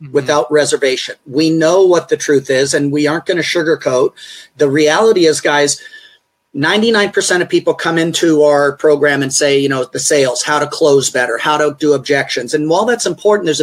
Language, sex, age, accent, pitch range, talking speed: English, male, 40-59, American, 150-205 Hz, 195 wpm